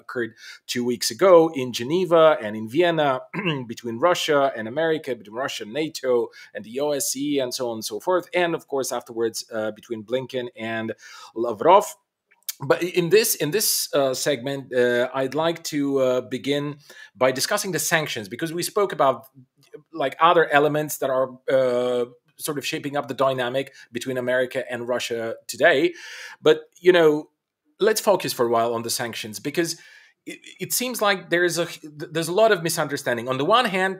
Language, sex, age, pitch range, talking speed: English, male, 40-59, 130-175 Hz, 180 wpm